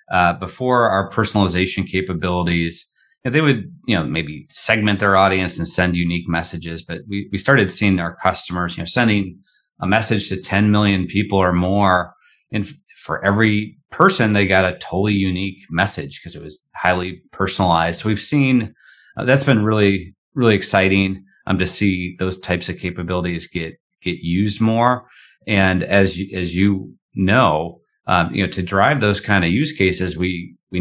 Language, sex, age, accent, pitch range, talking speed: English, male, 30-49, American, 90-100 Hz, 175 wpm